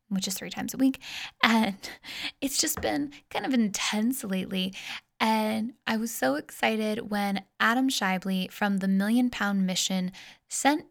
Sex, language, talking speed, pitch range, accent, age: female, English, 155 wpm, 200-245 Hz, American, 10-29